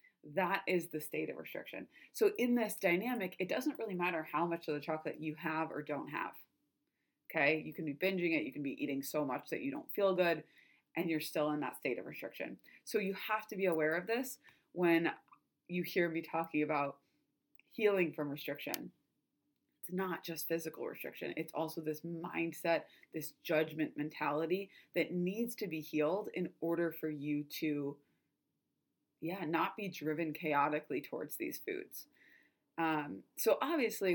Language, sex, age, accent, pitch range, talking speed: English, female, 20-39, American, 155-190 Hz, 175 wpm